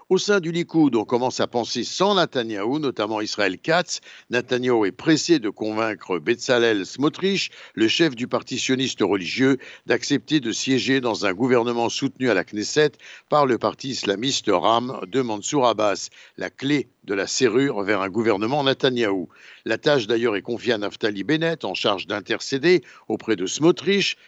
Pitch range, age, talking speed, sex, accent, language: 125-165 Hz, 60-79, 165 wpm, male, French, Italian